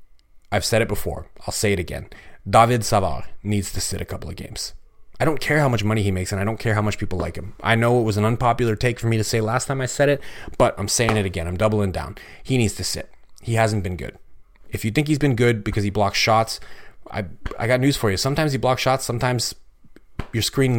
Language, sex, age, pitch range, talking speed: English, male, 30-49, 100-120 Hz, 255 wpm